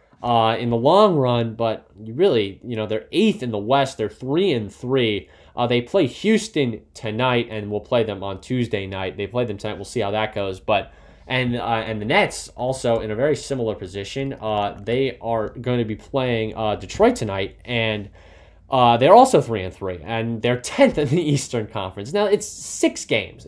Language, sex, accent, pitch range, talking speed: English, male, American, 105-135 Hz, 200 wpm